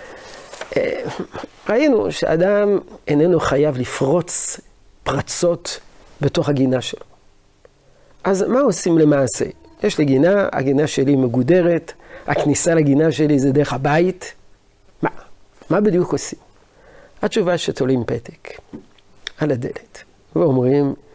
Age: 50-69